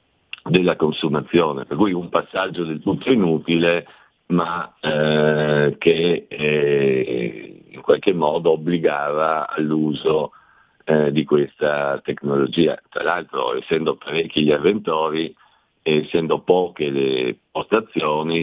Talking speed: 105 wpm